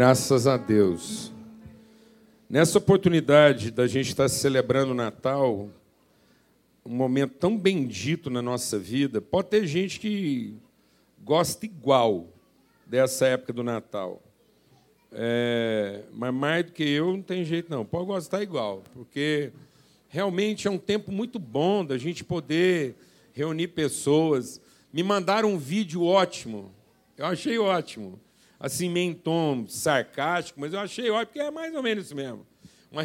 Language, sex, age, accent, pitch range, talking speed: Portuguese, male, 50-69, Brazilian, 140-200 Hz, 140 wpm